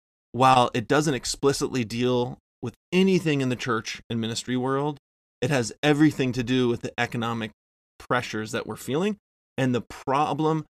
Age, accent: 20-39, American